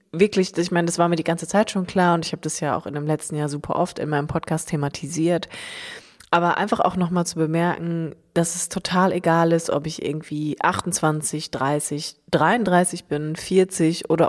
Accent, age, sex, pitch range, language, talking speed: German, 20-39, female, 155-190 Hz, German, 195 wpm